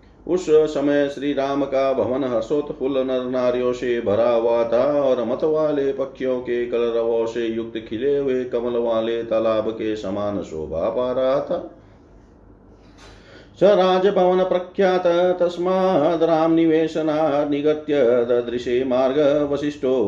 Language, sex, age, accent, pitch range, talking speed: Hindi, male, 40-59, native, 120-160 Hz, 105 wpm